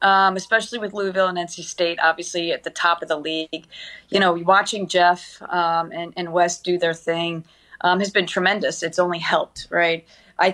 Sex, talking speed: female, 195 wpm